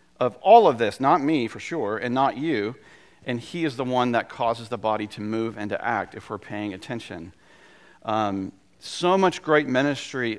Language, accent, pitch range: English, American, 105-135 Hz